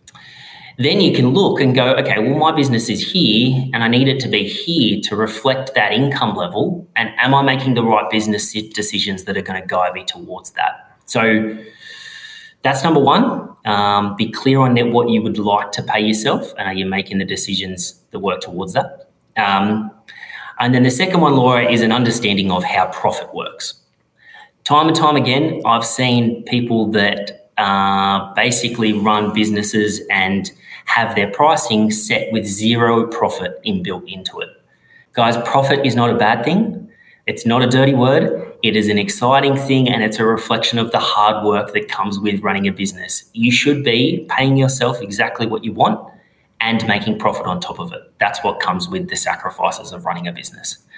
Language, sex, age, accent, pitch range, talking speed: English, male, 30-49, Australian, 105-135 Hz, 185 wpm